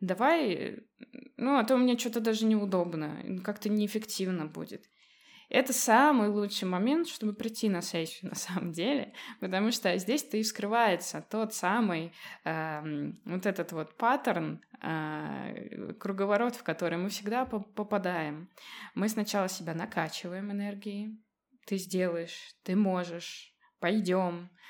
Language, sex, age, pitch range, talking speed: Russian, female, 20-39, 185-225 Hz, 125 wpm